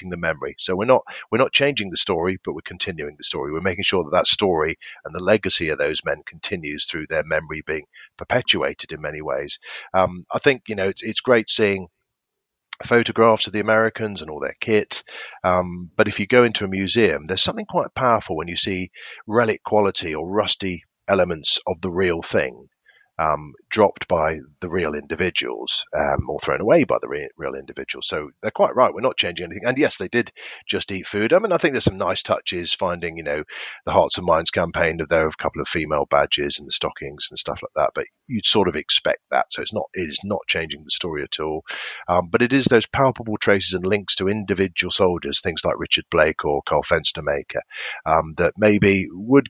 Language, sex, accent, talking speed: English, male, British, 210 wpm